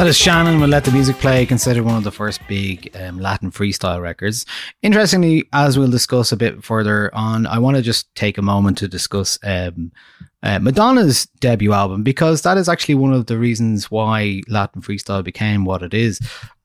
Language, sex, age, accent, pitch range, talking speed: English, male, 20-39, Irish, 100-130 Hz, 200 wpm